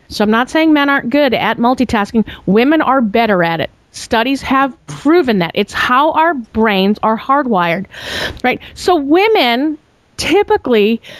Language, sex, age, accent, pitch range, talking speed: English, female, 40-59, American, 215-315 Hz, 150 wpm